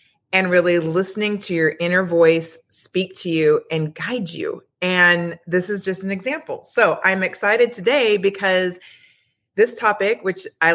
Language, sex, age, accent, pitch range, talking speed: English, female, 20-39, American, 160-195 Hz, 155 wpm